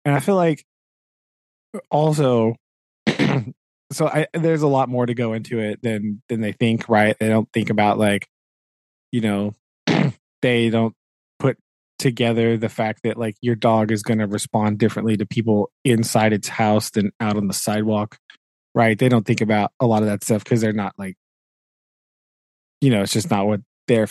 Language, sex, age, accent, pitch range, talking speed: English, male, 20-39, American, 105-140 Hz, 180 wpm